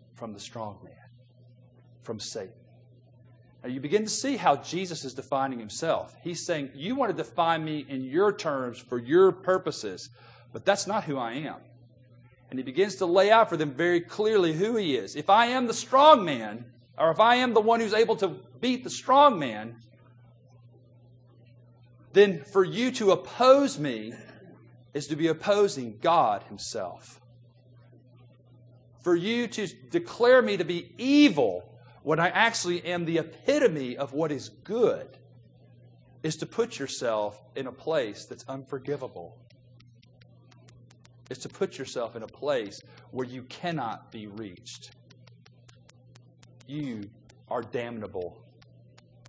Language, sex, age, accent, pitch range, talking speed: English, male, 40-59, American, 120-175 Hz, 145 wpm